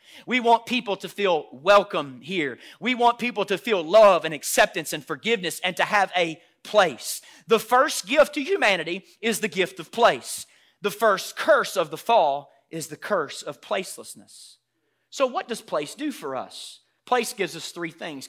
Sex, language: male, English